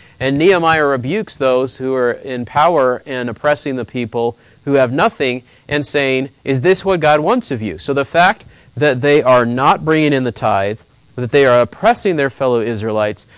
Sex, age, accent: male, 30-49, American